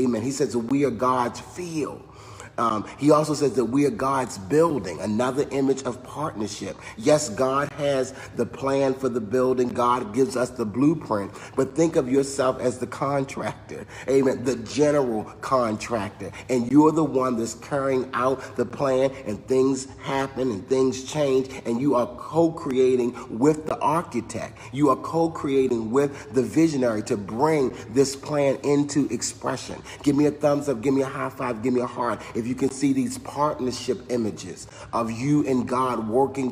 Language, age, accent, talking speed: English, 40-59, American, 170 wpm